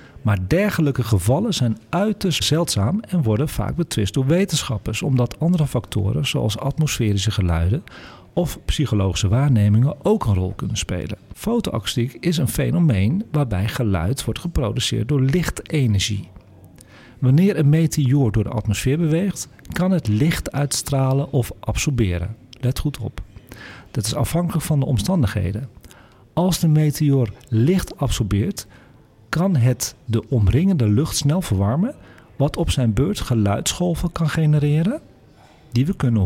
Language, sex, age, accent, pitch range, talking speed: Dutch, male, 40-59, Dutch, 105-155 Hz, 130 wpm